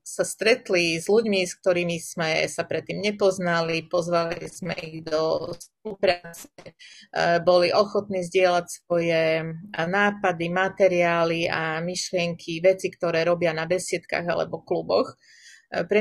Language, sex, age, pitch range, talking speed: Slovak, female, 30-49, 165-185 Hz, 115 wpm